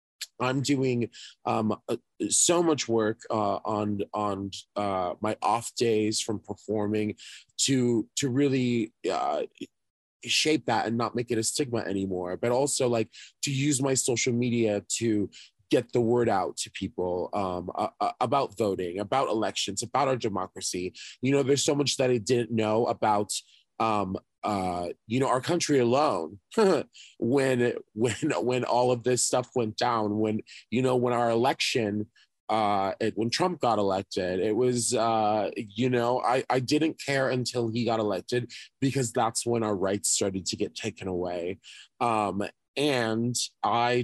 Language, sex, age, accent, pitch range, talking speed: English, male, 20-39, American, 105-125 Hz, 160 wpm